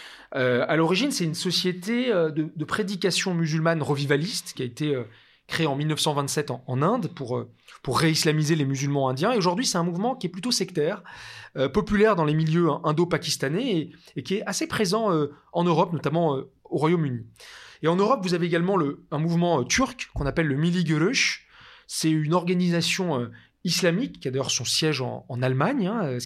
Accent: French